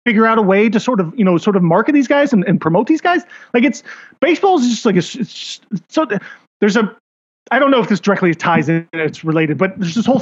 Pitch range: 160-210 Hz